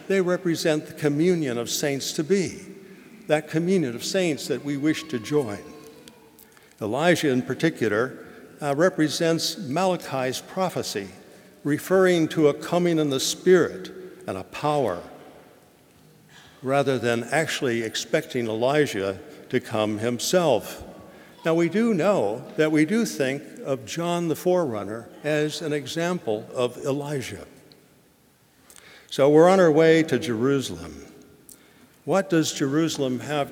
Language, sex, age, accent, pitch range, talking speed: English, male, 60-79, American, 135-170 Hz, 120 wpm